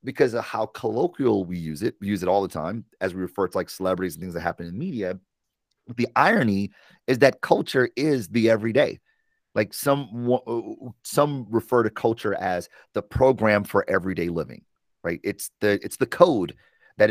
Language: English